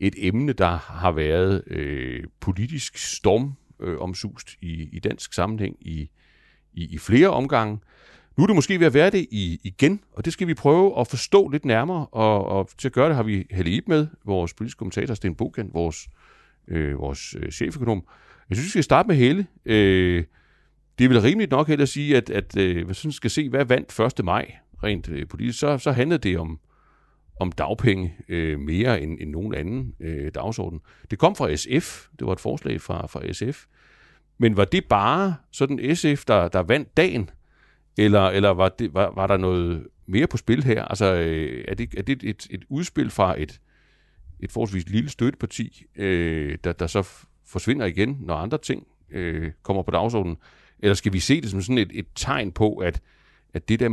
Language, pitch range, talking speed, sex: Danish, 85-125 Hz, 200 wpm, male